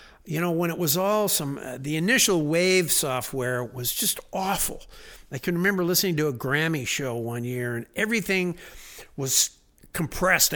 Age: 60-79